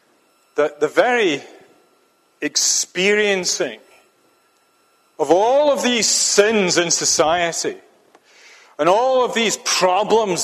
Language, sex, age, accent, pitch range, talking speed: English, male, 40-59, British, 145-210 Hz, 90 wpm